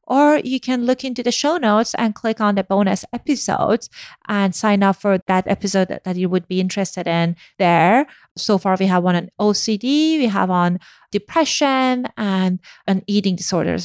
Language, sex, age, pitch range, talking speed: English, female, 30-49, 185-245 Hz, 180 wpm